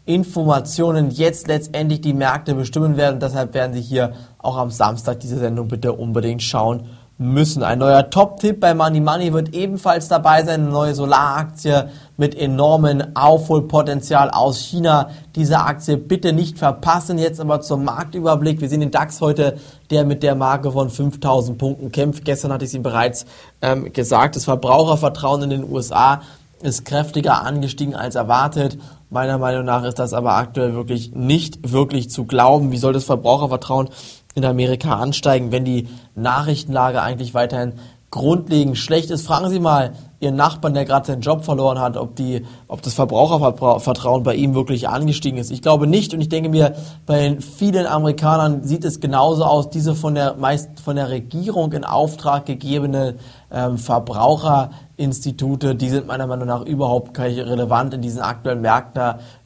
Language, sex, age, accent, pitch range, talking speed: German, male, 20-39, German, 125-150 Hz, 165 wpm